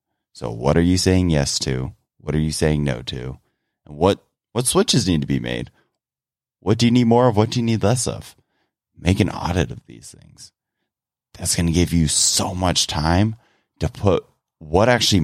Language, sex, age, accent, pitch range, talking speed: English, male, 30-49, American, 80-110 Hz, 200 wpm